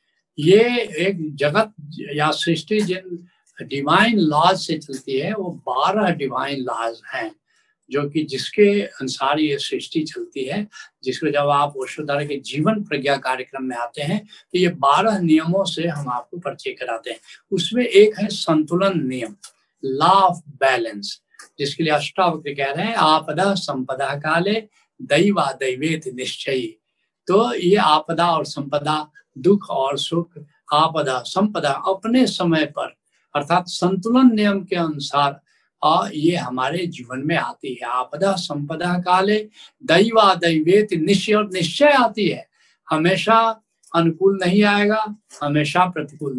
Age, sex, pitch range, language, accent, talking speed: 70-89, male, 145-200 Hz, Hindi, native, 130 wpm